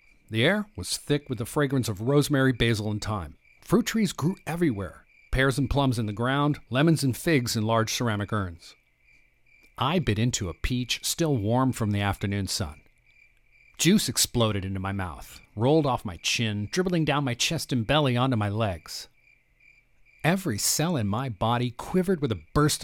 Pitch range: 110-155 Hz